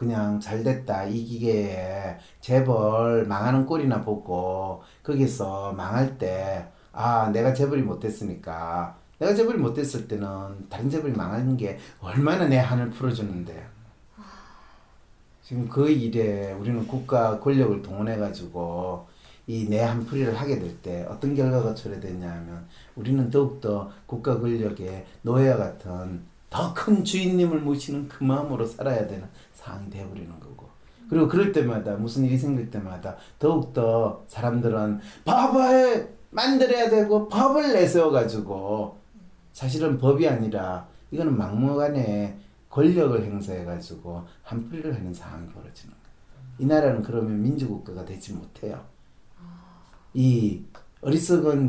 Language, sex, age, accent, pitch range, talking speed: English, male, 40-59, Korean, 100-140 Hz, 110 wpm